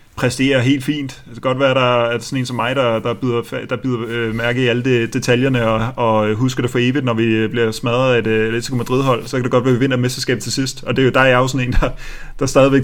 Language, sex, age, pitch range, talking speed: Danish, male, 30-49, 115-135 Hz, 275 wpm